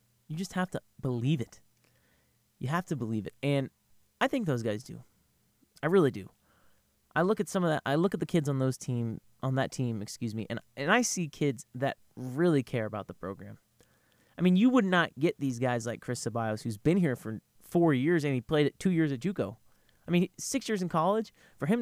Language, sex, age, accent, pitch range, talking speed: English, male, 30-49, American, 120-195 Hz, 225 wpm